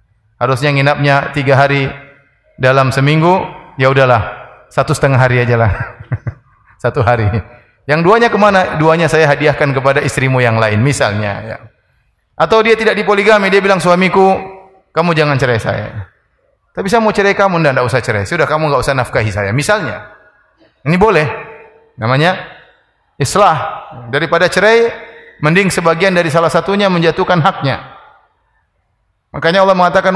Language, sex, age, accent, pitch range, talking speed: Indonesian, male, 30-49, native, 130-205 Hz, 135 wpm